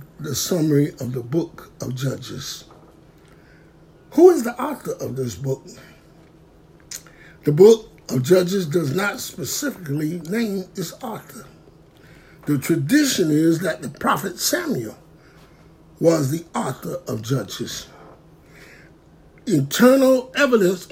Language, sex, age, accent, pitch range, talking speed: English, male, 60-79, American, 165-235 Hz, 110 wpm